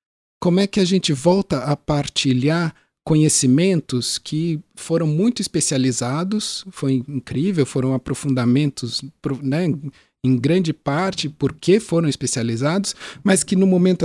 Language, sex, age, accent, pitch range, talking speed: Portuguese, male, 50-69, Brazilian, 135-175 Hz, 120 wpm